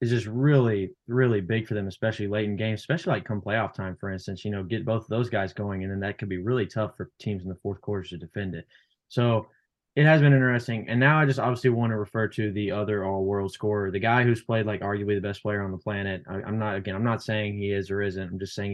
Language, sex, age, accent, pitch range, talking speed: English, male, 20-39, American, 105-125 Hz, 275 wpm